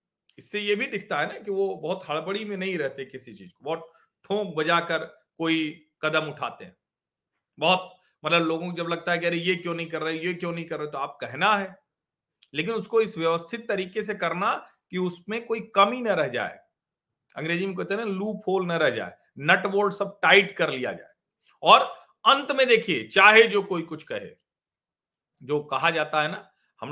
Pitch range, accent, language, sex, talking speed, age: 155-205 Hz, native, Hindi, male, 205 wpm, 40-59